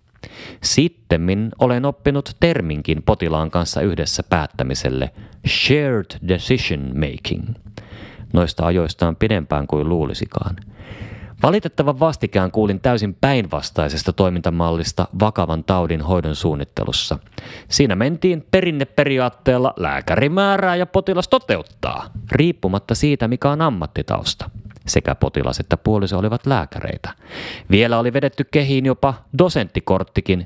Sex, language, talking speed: male, Finnish, 100 wpm